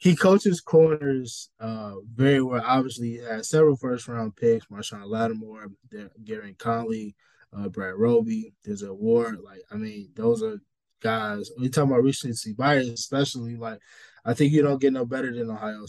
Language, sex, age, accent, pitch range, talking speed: English, male, 20-39, American, 115-155 Hz, 170 wpm